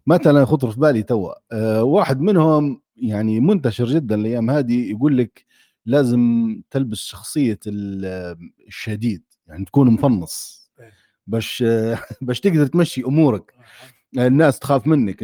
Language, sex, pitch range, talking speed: Arabic, male, 125-170 Hz, 115 wpm